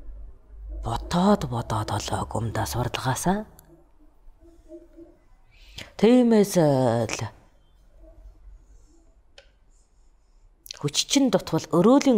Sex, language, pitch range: female, English, 100-160 Hz